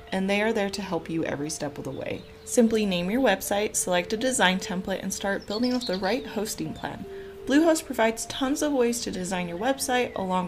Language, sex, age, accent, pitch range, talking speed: English, female, 30-49, American, 185-245 Hz, 220 wpm